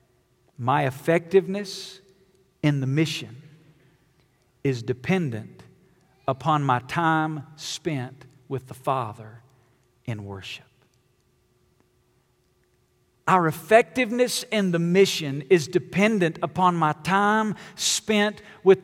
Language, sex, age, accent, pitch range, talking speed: English, male, 50-69, American, 145-240 Hz, 90 wpm